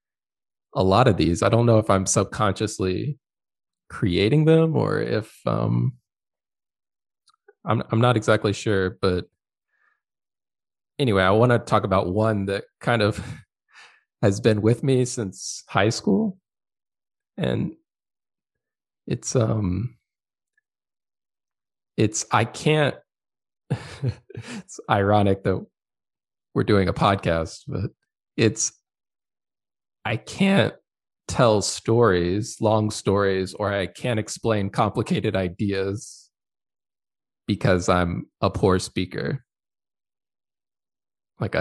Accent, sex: American, male